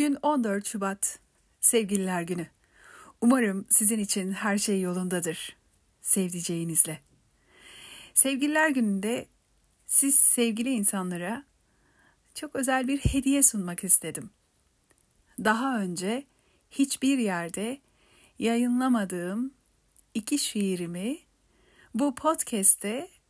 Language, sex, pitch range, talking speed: Turkish, female, 185-245 Hz, 80 wpm